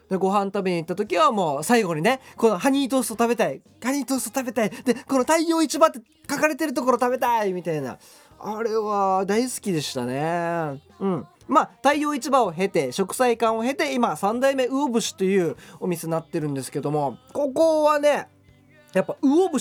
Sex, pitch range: male, 190-295 Hz